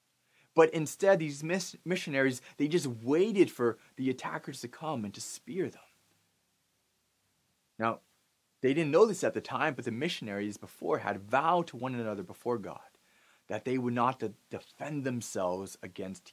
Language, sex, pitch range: English, male, 115-155 Hz